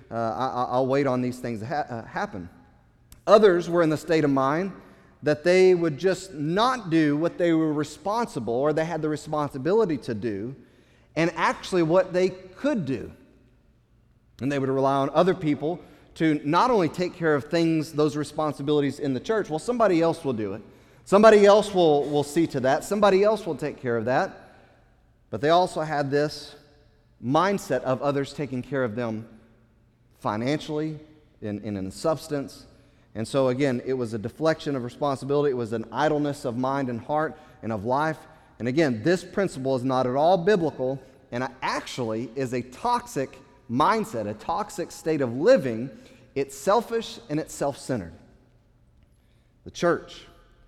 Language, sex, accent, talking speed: English, male, American, 165 wpm